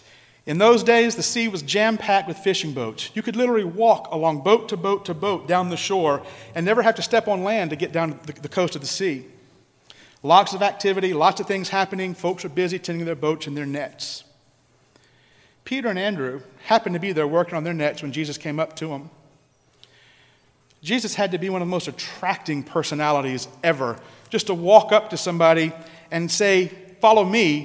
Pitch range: 145-200 Hz